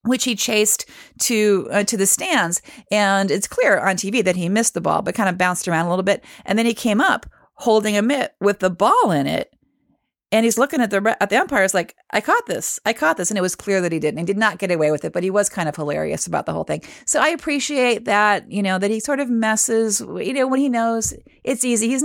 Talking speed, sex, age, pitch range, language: 265 wpm, female, 40-59, 190-235 Hz, English